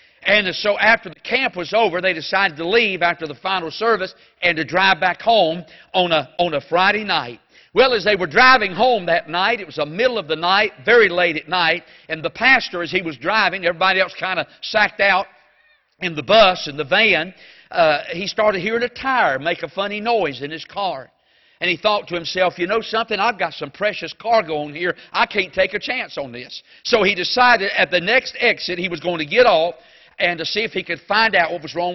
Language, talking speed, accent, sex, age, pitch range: English, 230 wpm, American, male, 50-69, 170-225 Hz